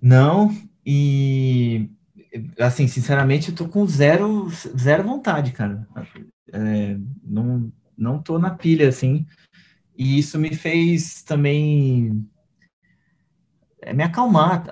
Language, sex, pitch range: Portuguese, male, 130-170 Hz